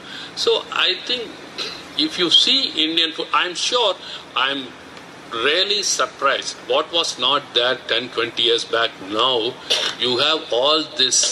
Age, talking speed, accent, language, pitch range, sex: 50-69, 140 wpm, Indian, English, 140-220 Hz, male